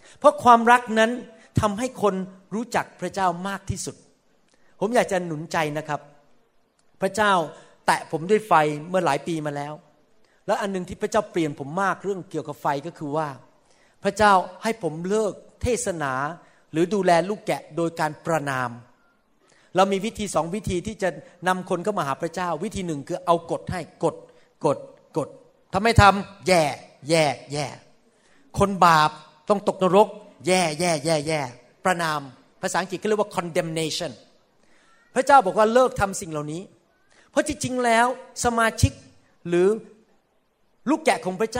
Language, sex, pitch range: Thai, male, 170-235 Hz